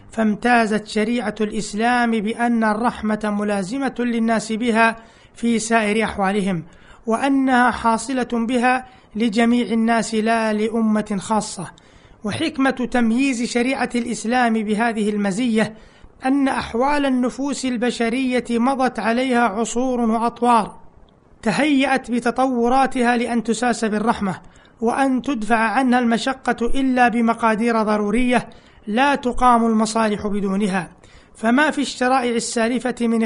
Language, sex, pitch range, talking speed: Arabic, male, 220-250 Hz, 95 wpm